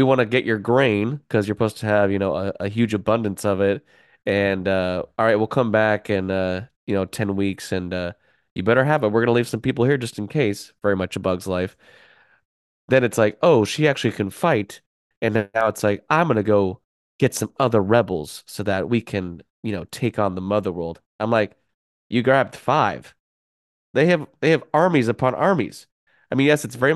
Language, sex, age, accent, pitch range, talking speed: English, male, 20-39, American, 100-125 Hz, 225 wpm